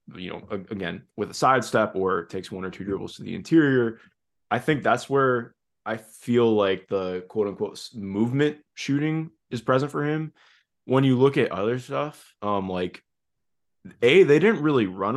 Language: English